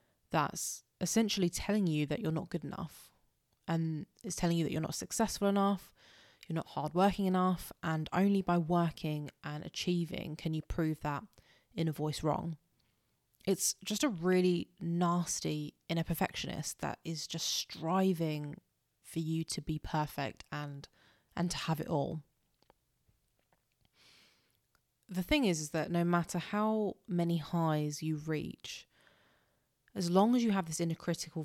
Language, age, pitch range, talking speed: English, 20-39, 155-175 Hz, 150 wpm